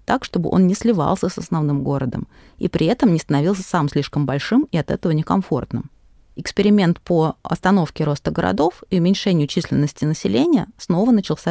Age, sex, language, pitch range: 30-49, female, Russian, 155-205 Hz